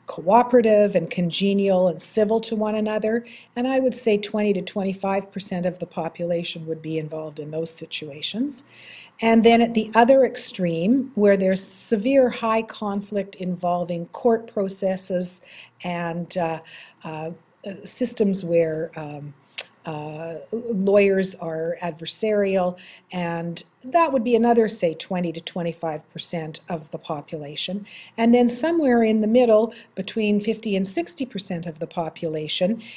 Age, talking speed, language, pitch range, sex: 50-69, 130 wpm, English, 170-220 Hz, female